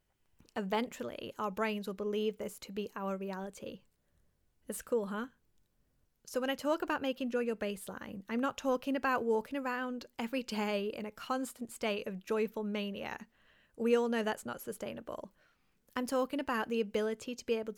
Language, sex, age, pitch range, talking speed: English, female, 20-39, 210-245 Hz, 170 wpm